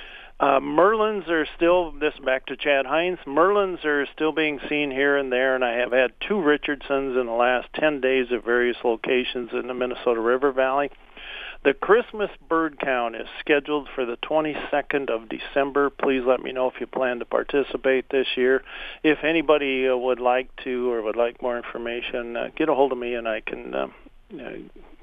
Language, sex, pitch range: English, male, 125-150 Hz